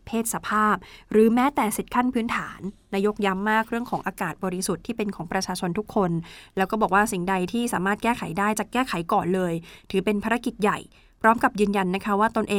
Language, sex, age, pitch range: Thai, female, 20-39, 190-220 Hz